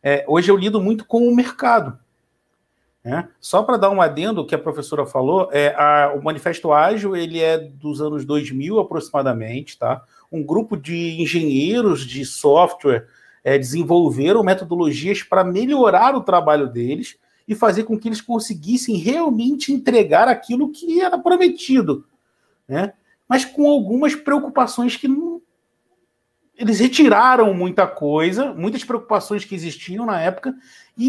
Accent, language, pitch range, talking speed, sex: Brazilian, Portuguese, 150-240 Hz, 135 wpm, male